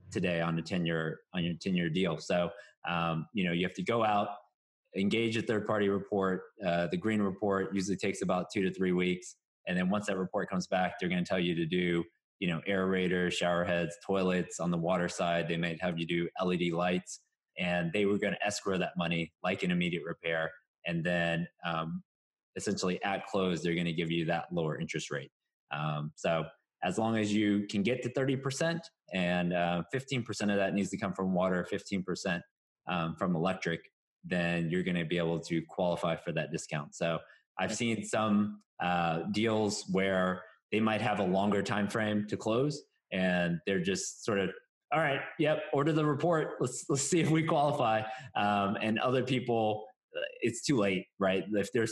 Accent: American